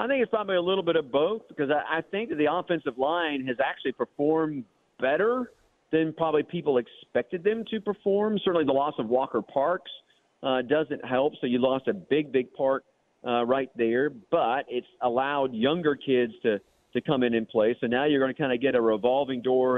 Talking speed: 200 wpm